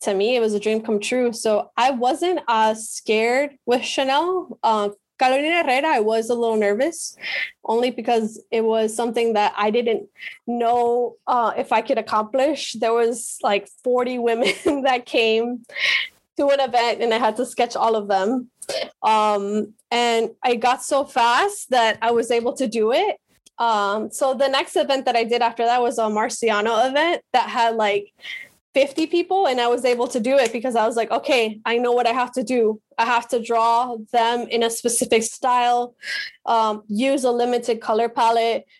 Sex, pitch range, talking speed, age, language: female, 225-255 Hz, 185 wpm, 10-29, English